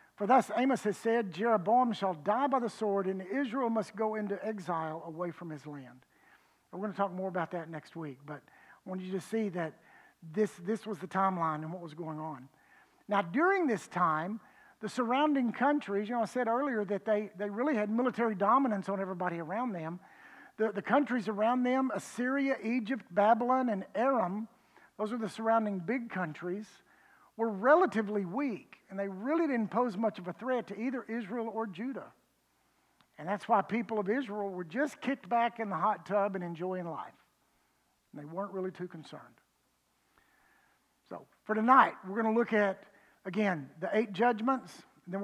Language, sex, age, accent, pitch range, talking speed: English, male, 50-69, American, 185-240 Hz, 185 wpm